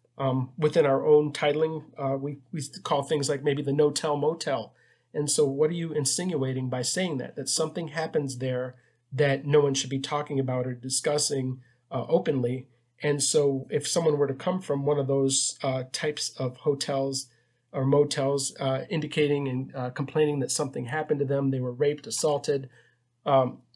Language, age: English, 40-59